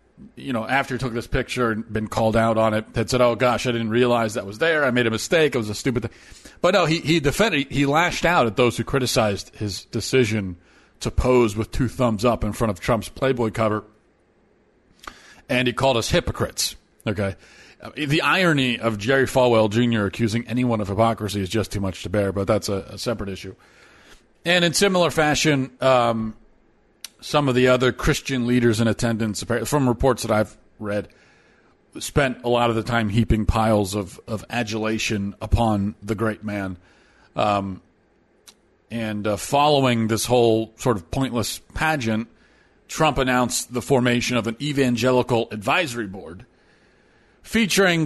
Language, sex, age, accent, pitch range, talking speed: English, male, 40-59, American, 110-125 Hz, 175 wpm